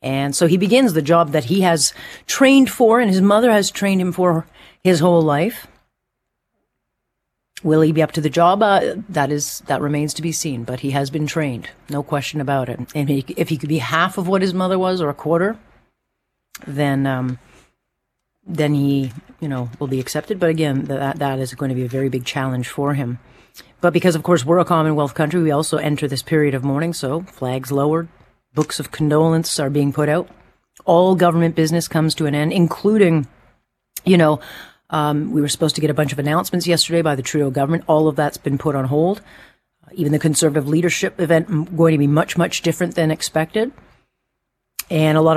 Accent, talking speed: American, 210 wpm